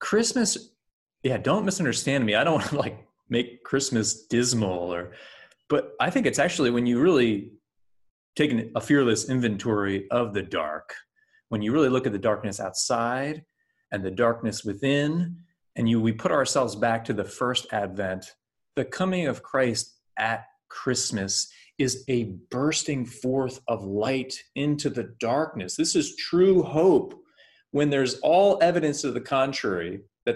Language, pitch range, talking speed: English, 115-170 Hz, 155 wpm